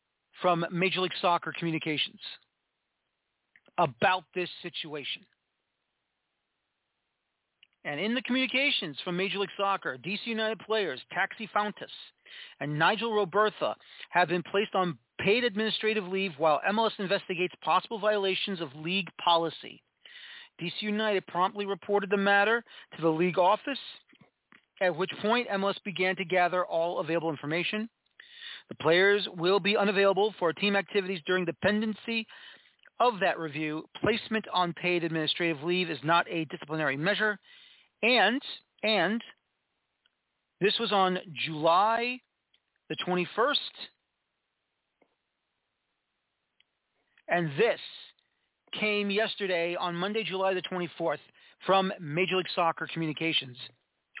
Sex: male